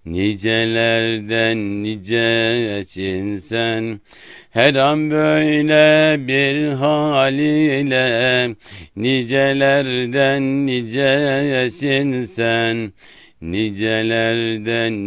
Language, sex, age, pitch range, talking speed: Turkish, male, 60-79, 110-135 Hz, 50 wpm